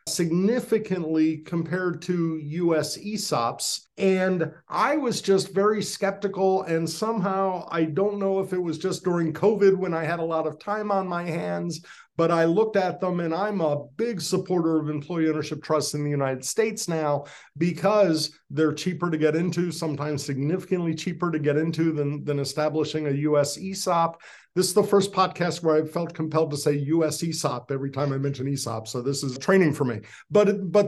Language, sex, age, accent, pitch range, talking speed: English, male, 50-69, American, 155-195 Hz, 185 wpm